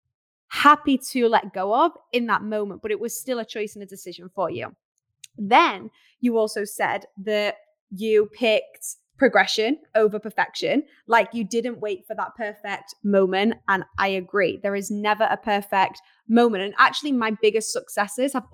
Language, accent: English, British